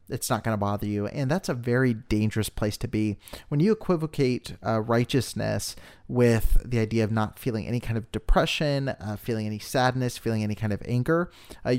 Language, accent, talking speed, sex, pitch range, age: English, American, 200 wpm, male, 105-125 Hz, 30-49